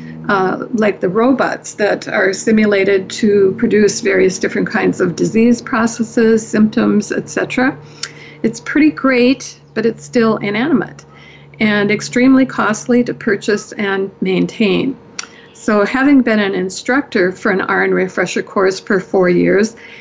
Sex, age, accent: female, 50-69, American